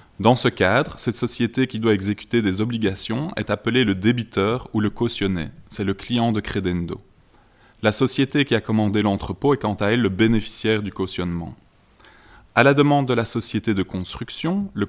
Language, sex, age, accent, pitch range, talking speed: French, male, 20-39, French, 100-120 Hz, 180 wpm